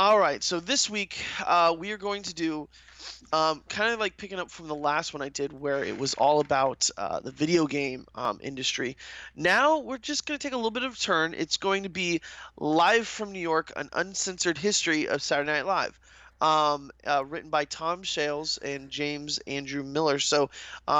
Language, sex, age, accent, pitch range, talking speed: English, male, 20-39, American, 145-180 Hz, 200 wpm